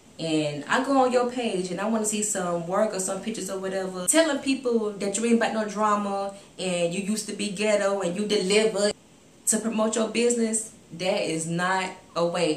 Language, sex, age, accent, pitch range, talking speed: English, female, 20-39, American, 185-230 Hz, 205 wpm